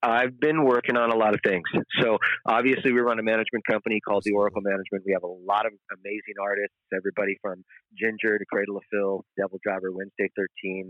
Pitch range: 100-115 Hz